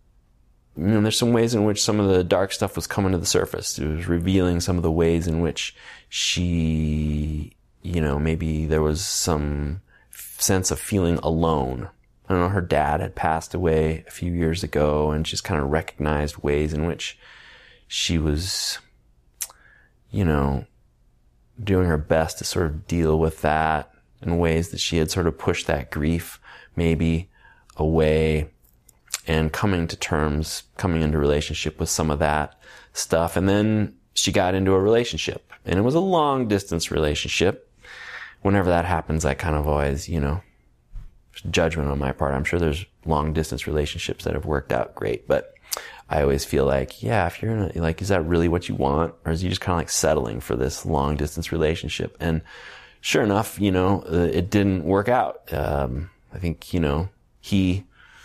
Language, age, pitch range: English, 30-49, 75-90 Hz